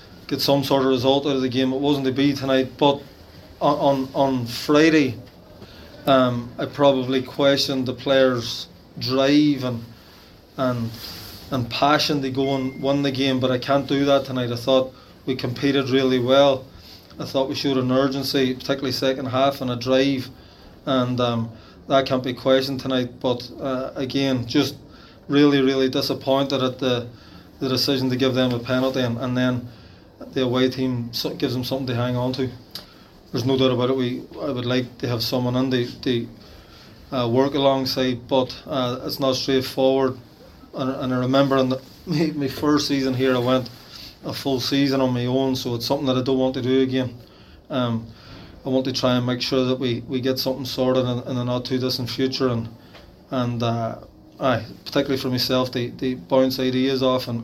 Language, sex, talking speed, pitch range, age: English, male, 190 wpm, 125-135 Hz, 20-39